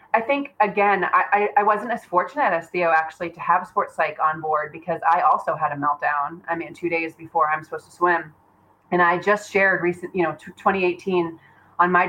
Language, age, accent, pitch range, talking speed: English, 20-39, American, 160-185 Hz, 210 wpm